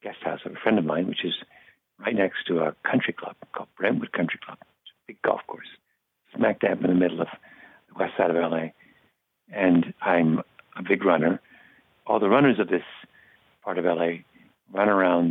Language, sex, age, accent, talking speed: English, male, 60-79, American, 190 wpm